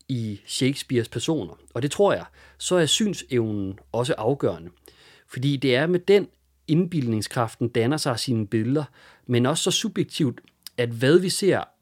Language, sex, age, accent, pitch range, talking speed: English, male, 40-59, Danish, 115-165 Hz, 150 wpm